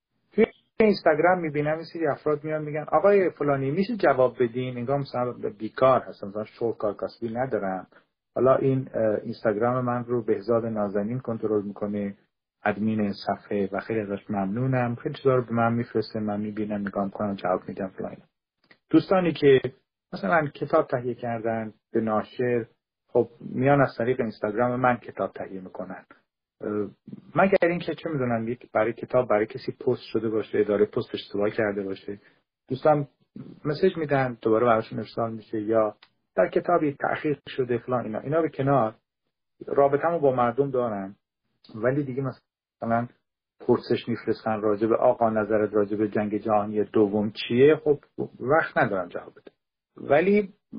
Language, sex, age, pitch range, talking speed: Persian, male, 40-59, 105-140 Hz, 150 wpm